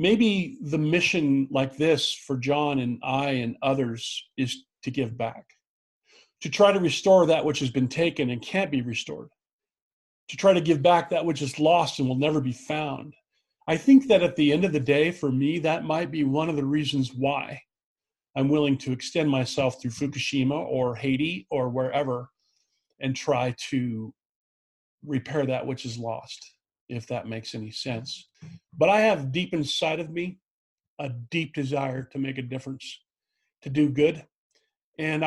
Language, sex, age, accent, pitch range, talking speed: English, male, 40-59, American, 135-160 Hz, 175 wpm